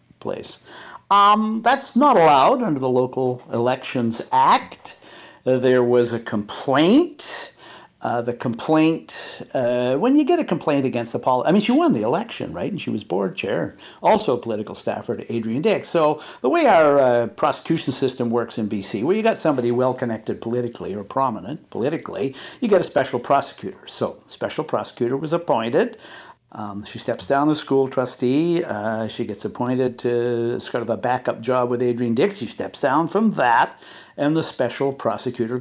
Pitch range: 120-165 Hz